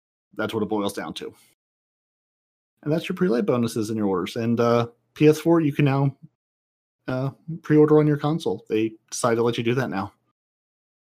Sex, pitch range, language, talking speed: male, 115-145 Hz, English, 180 wpm